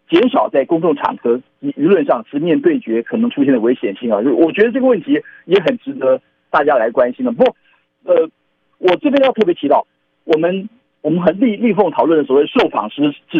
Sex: male